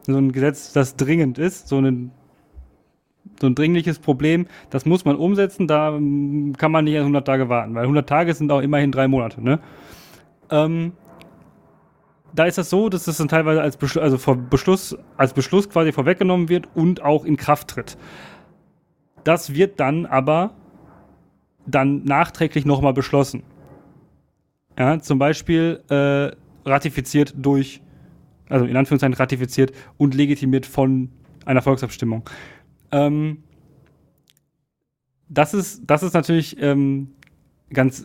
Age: 30-49